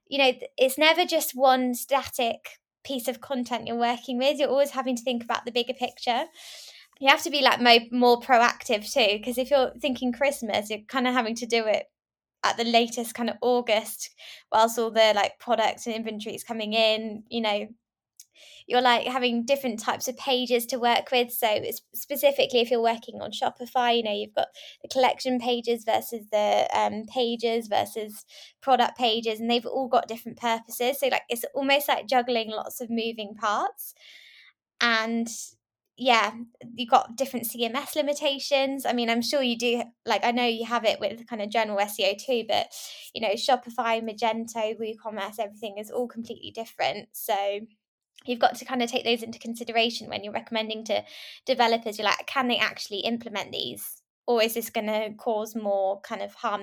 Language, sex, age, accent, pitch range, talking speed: English, female, 10-29, British, 225-255 Hz, 185 wpm